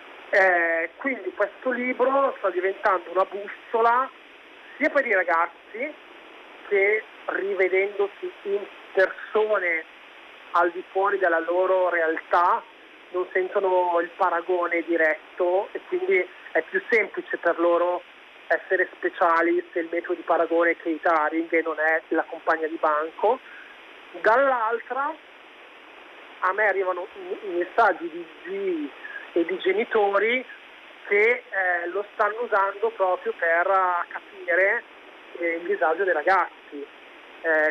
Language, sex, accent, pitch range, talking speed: Italian, male, native, 170-215 Hz, 120 wpm